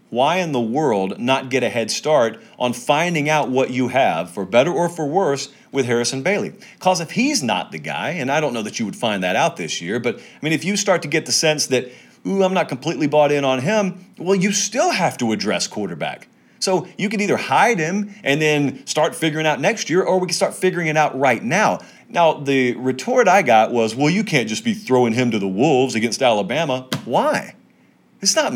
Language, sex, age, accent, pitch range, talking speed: English, male, 40-59, American, 140-205 Hz, 230 wpm